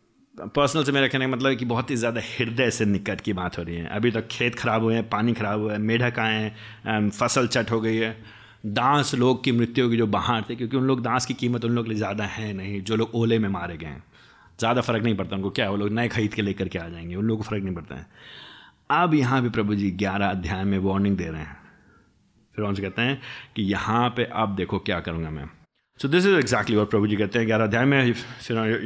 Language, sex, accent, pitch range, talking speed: Hindi, male, native, 110-140 Hz, 245 wpm